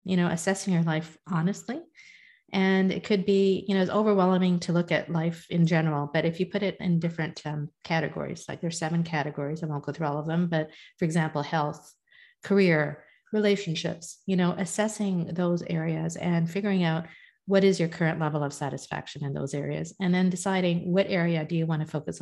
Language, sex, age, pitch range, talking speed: English, female, 40-59, 155-190 Hz, 200 wpm